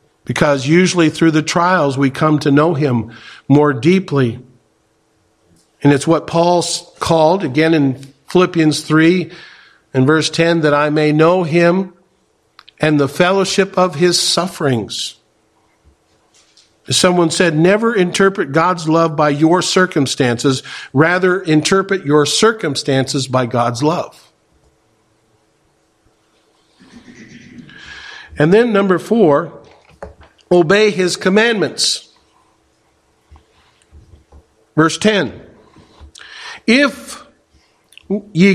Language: English